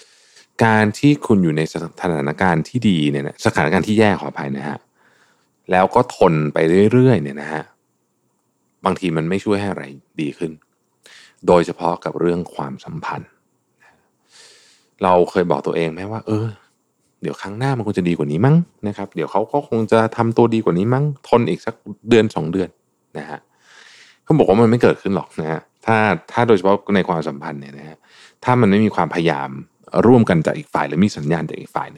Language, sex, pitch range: Thai, male, 80-110 Hz